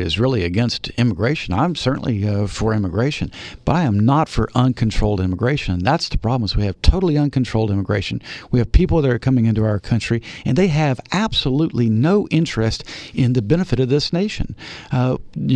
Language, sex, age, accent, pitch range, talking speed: English, male, 50-69, American, 110-140 Hz, 180 wpm